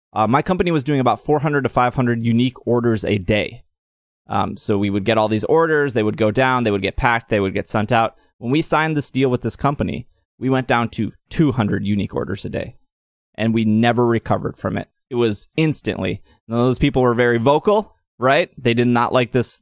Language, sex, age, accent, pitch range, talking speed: English, male, 20-39, American, 110-140 Hz, 225 wpm